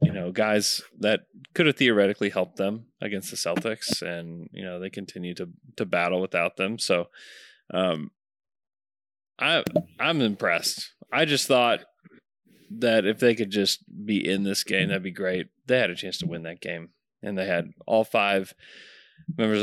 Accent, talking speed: American, 170 wpm